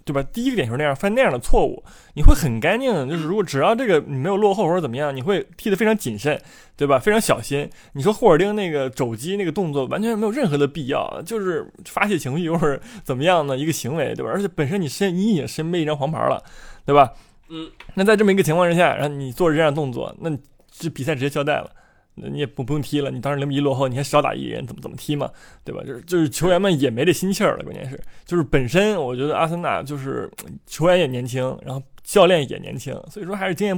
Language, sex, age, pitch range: Chinese, male, 20-39, 140-200 Hz